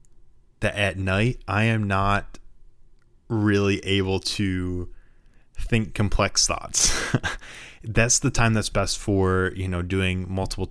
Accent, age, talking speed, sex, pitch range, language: American, 20-39, 125 wpm, male, 95-115 Hz, English